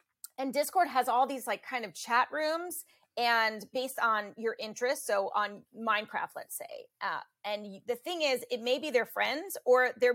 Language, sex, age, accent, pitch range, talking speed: English, female, 30-49, American, 215-265 Hz, 190 wpm